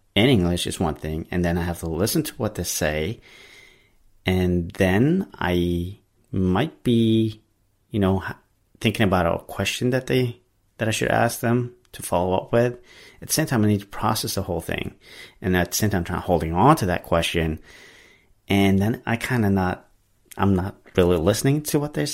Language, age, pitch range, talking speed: English, 30-49, 90-115 Hz, 200 wpm